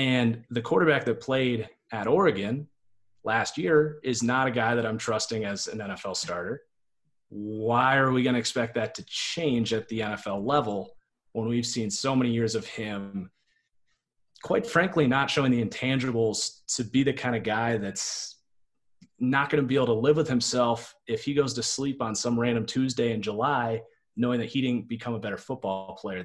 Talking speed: 190 wpm